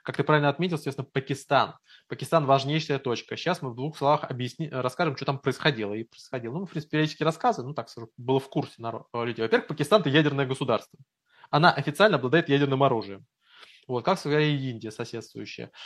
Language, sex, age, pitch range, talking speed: Russian, male, 20-39, 125-150 Hz, 180 wpm